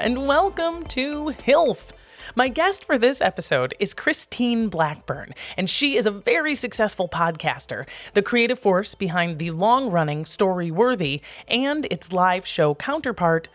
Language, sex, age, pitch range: English, female, 30-49, 170-250 Hz